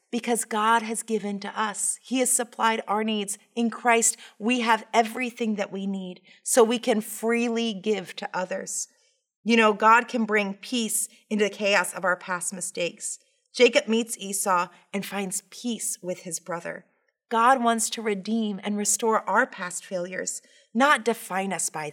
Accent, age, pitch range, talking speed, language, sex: American, 30-49, 195-235 Hz, 165 wpm, English, female